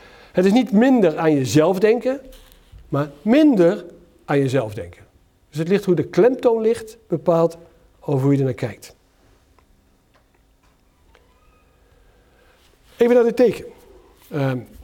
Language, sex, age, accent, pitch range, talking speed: Dutch, male, 60-79, Dutch, 135-190 Hz, 125 wpm